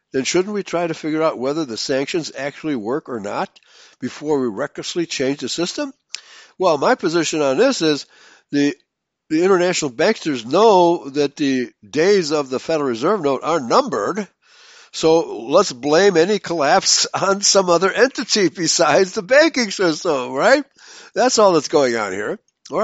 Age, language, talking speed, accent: 60-79, English, 165 wpm, American